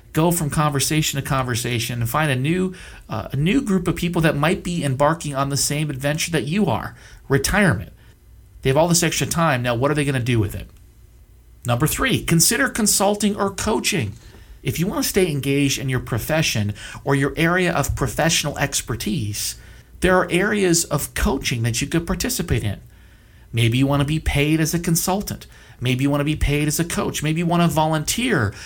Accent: American